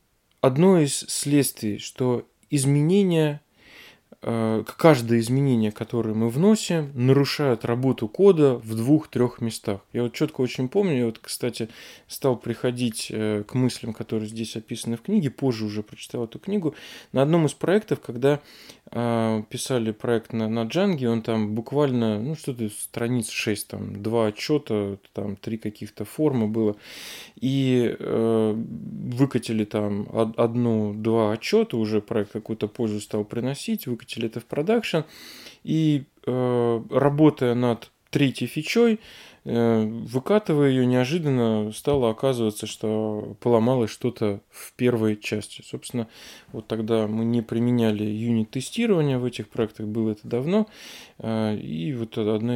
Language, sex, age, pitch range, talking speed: Russian, male, 20-39, 110-140 Hz, 125 wpm